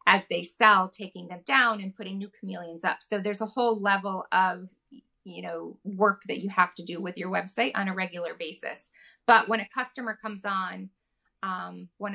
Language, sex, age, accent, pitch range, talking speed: English, female, 20-39, American, 185-215 Hz, 200 wpm